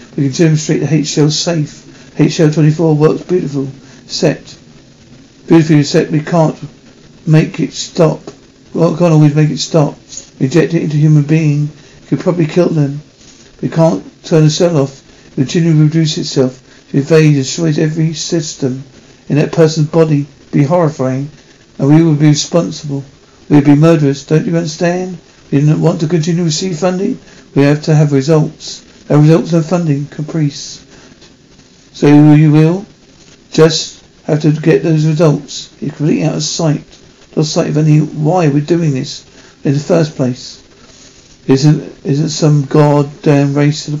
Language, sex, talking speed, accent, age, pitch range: English, male, 165 wpm, British, 60-79, 145-165 Hz